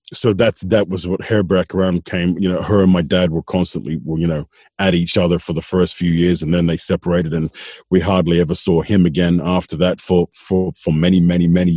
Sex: male